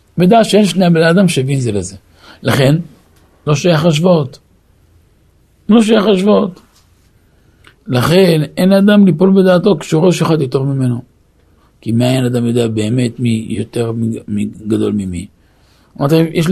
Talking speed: 125 wpm